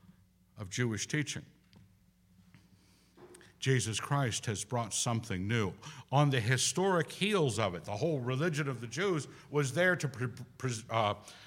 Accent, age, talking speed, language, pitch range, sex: American, 60-79, 130 wpm, English, 100-155 Hz, male